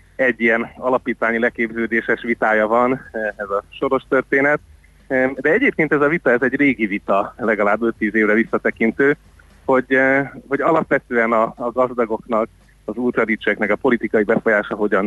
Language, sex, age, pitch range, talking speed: Hungarian, male, 30-49, 105-125 Hz, 140 wpm